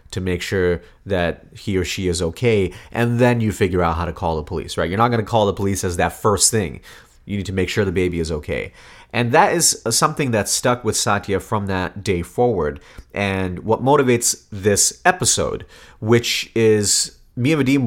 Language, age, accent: English, 30-49, American